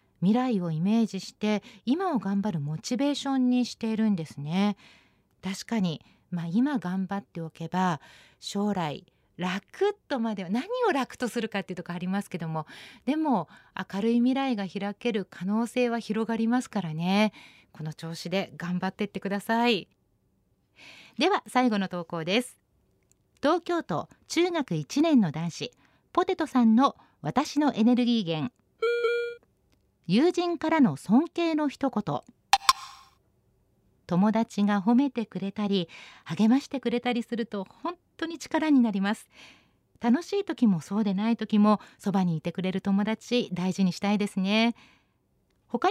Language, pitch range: Japanese, 190-260 Hz